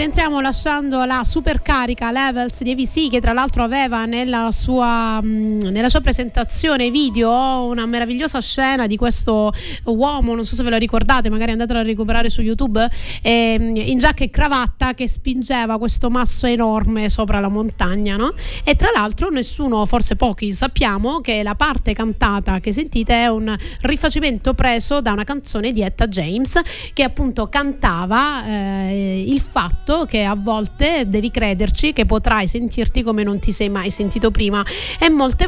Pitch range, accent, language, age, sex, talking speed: 220-270 Hz, native, Italian, 30-49, female, 160 wpm